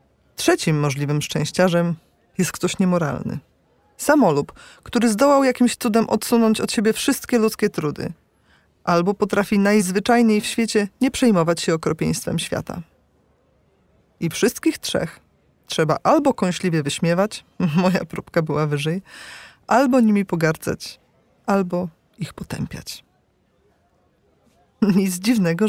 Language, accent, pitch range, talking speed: Polish, native, 175-245 Hz, 105 wpm